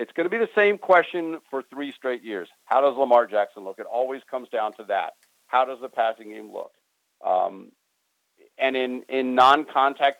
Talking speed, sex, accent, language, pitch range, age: 195 wpm, male, American, English, 125-155 Hz, 50-69